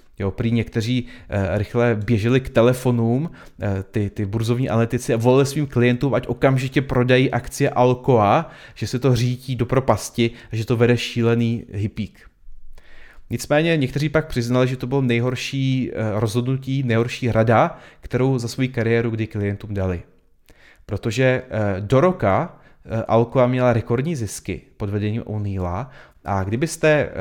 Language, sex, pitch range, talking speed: Czech, male, 110-130 Hz, 135 wpm